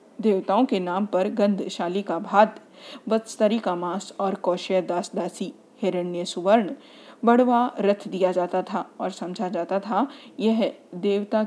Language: Hindi